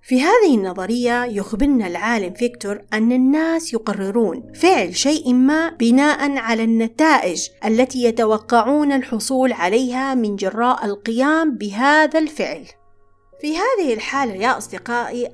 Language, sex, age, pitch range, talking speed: Arabic, female, 30-49, 215-300 Hz, 115 wpm